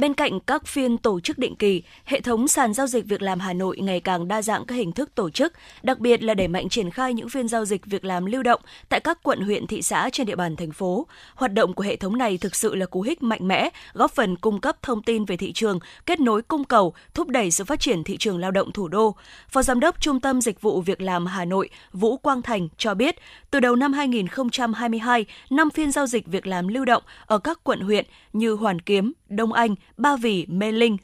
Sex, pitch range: female, 200-260 Hz